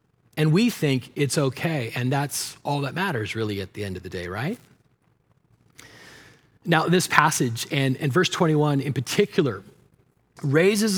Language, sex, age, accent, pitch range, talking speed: English, male, 40-59, American, 135-170 Hz, 155 wpm